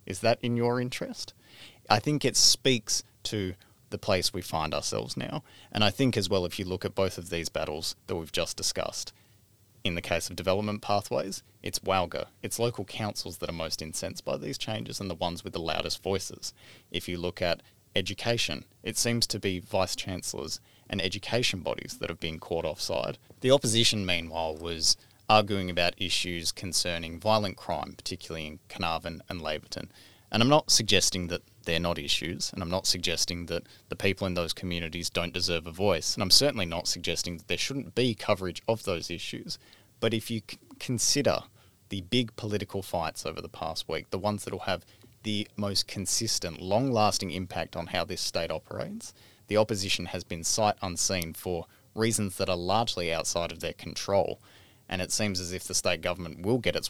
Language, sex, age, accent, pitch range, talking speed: English, male, 30-49, Australian, 85-110 Hz, 190 wpm